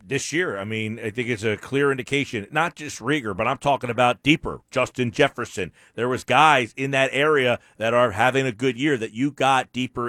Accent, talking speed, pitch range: American, 215 wpm, 100-140 Hz